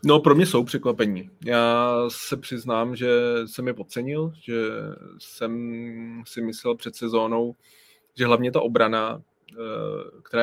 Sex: male